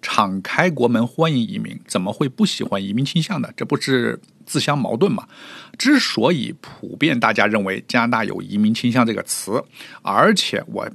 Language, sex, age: Chinese, male, 50-69